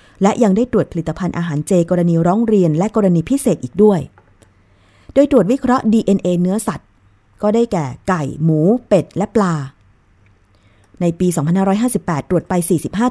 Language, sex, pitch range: Thai, female, 140-200 Hz